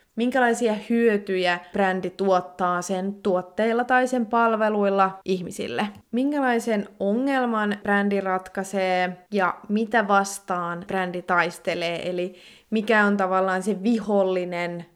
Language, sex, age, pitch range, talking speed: Finnish, female, 20-39, 180-210 Hz, 100 wpm